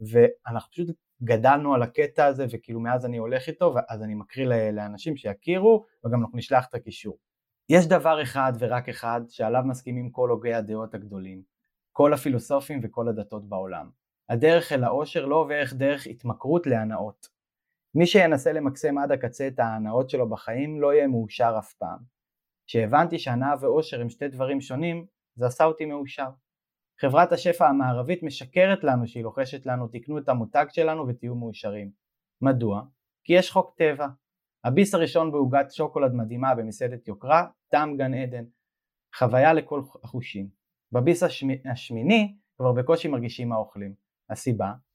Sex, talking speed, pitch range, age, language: male, 145 wpm, 115-150 Hz, 20-39, Hebrew